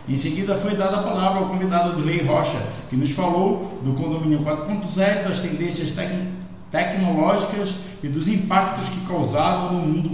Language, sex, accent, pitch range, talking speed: Portuguese, male, Brazilian, 150-190 Hz, 160 wpm